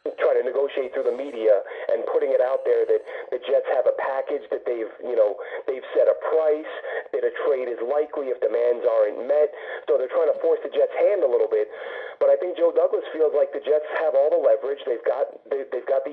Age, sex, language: 40-59, male, English